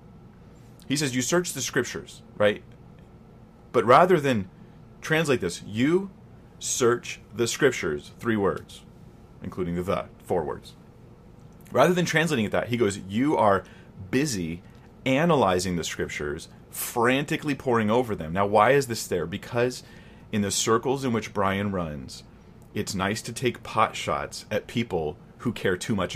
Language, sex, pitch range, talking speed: English, male, 95-120 Hz, 150 wpm